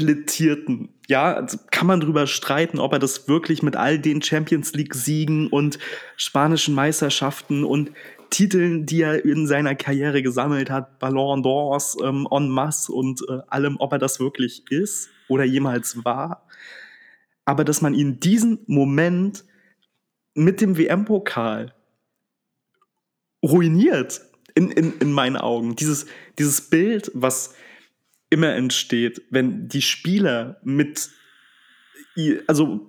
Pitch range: 135-165 Hz